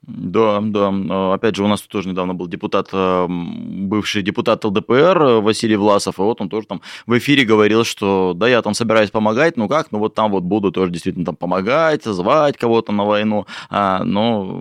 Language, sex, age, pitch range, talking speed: Russian, male, 20-39, 110-135 Hz, 185 wpm